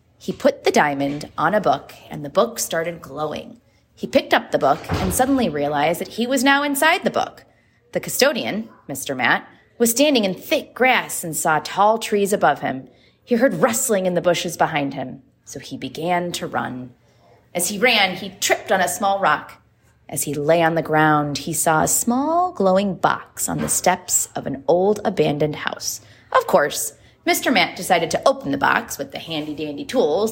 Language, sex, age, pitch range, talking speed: English, female, 30-49, 150-235 Hz, 190 wpm